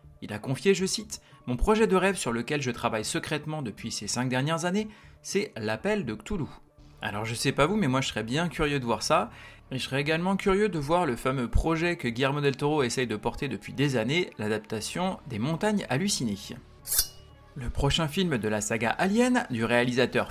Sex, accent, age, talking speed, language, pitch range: male, French, 30-49, 205 wpm, French, 120-190 Hz